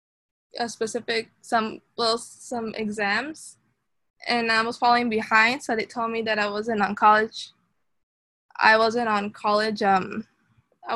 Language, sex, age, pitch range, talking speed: English, female, 10-29, 215-245 Hz, 140 wpm